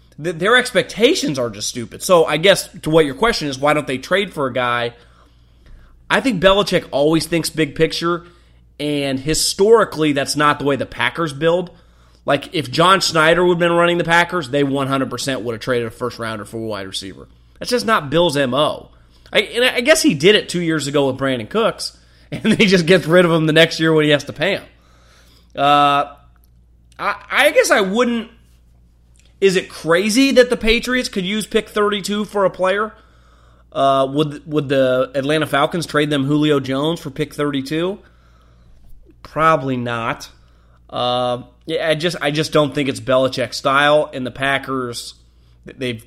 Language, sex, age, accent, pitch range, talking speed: English, male, 30-49, American, 115-170 Hz, 180 wpm